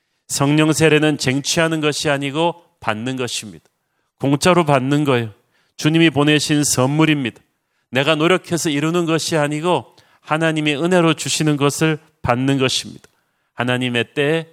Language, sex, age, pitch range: Korean, male, 40-59, 135-160 Hz